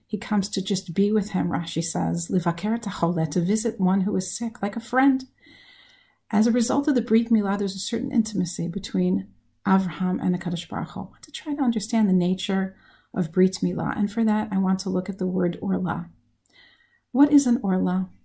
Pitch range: 180-220 Hz